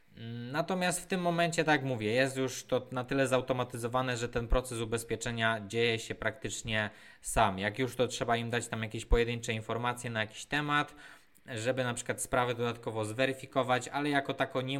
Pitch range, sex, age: 115-130 Hz, male, 20-39